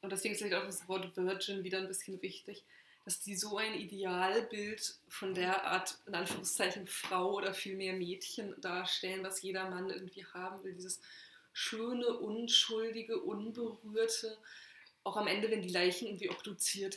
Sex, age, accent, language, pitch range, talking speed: female, 20-39, German, German, 185-210 Hz, 160 wpm